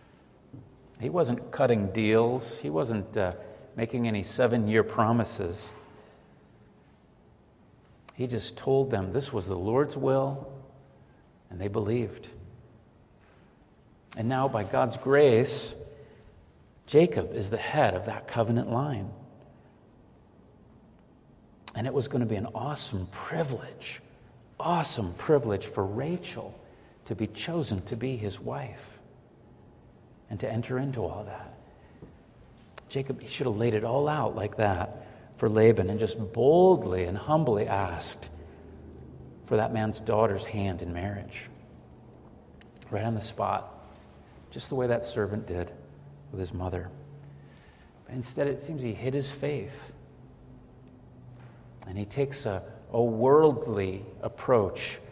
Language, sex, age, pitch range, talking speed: English, male, 50-69, 100-130 Hz, 125 wpm